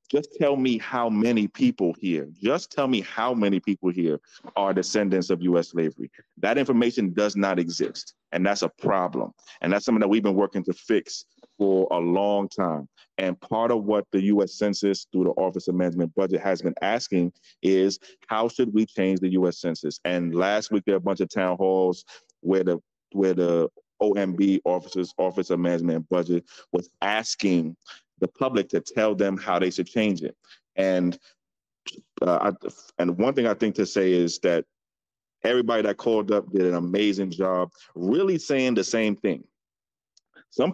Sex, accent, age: male, American, 30-49